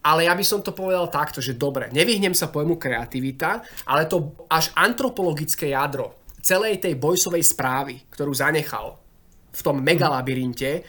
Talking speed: 150 wpm